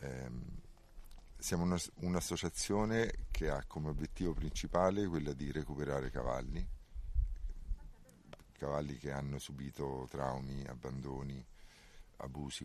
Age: 50-69